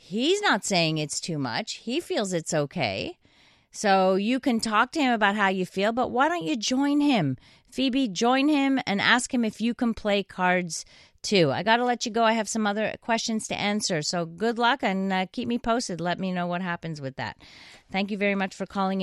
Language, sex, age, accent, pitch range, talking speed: English, female, 40-59, American, 175-230 Hz, 225 wpm